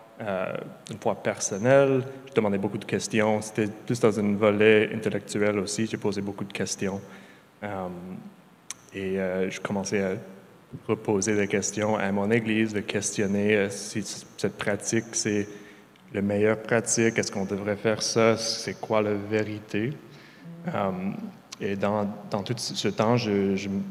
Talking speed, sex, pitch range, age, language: 155 wpm, male, 105-120 Hz, 30-49, French